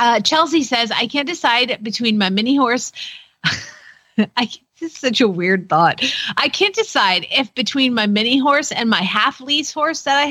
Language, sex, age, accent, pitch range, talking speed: English, female, 30-49, American, 215-305 Hz, 185 wpm